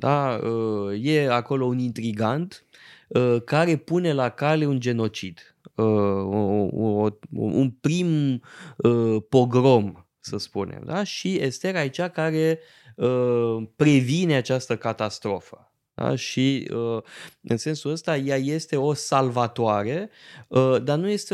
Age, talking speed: 20-39, 105 wpm